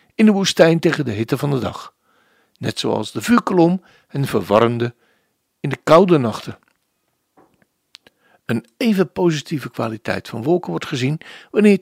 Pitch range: 120-170 Hz